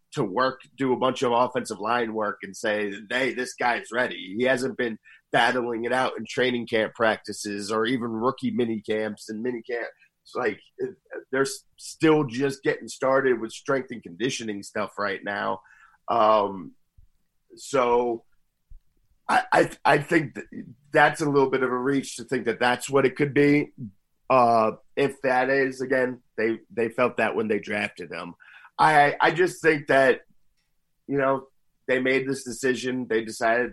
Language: English